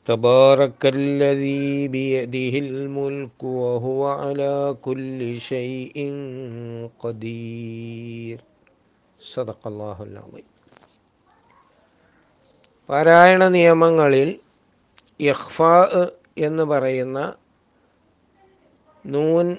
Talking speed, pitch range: 60 wpm, 130-155 Hz